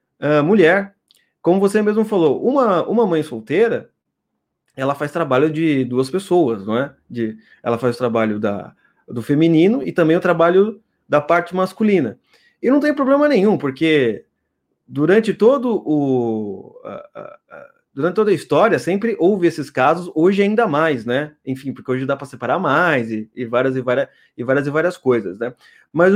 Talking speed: 175 wpm